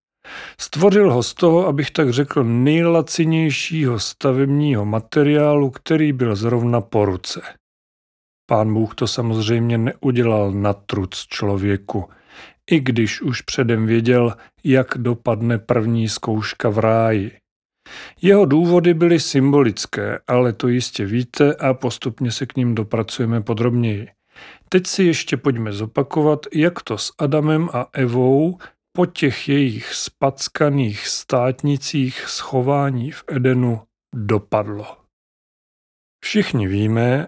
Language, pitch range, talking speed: Czech, 115-145 Hz, 115 wpm